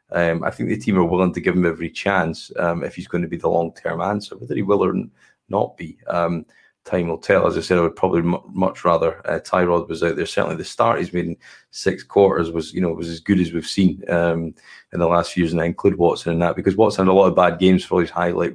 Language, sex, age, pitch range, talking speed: English, male, 20-39, 85-95 Hz, 275 wpm